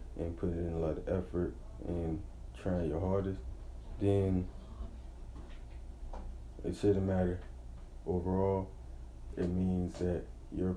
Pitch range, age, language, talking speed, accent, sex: 65-95 Hz, 20-39, English, 115 wpm, American, male